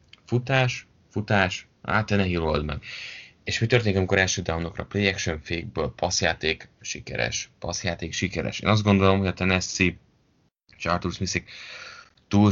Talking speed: 140 wpm